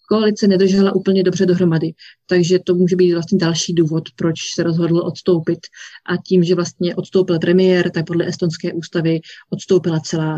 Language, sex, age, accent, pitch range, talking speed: Czech, female, 30-49, native, 170-195 Hz, 160 wpm